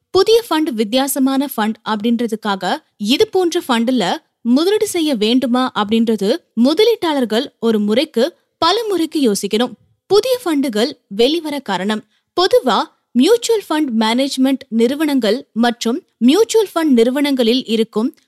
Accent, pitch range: native, 230-330 Hz